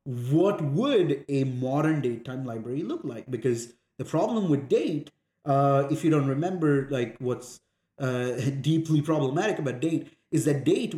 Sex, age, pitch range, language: male, 30-49, 130-160 Hz, English